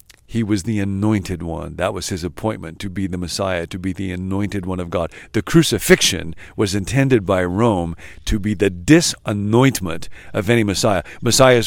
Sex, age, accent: male, 50-69, American